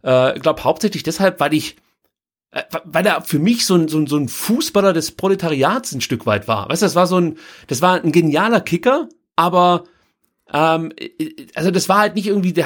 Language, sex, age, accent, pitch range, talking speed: German, male, 30-49, German, 155-200 Hz, 200 wpm